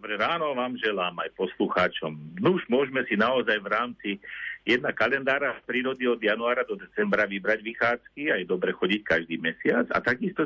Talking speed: 170 wpm